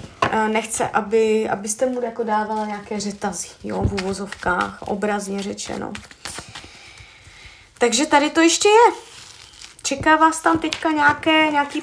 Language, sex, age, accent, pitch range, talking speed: Czech, female, 20-39, native, 215-285 Hz, 115 wpm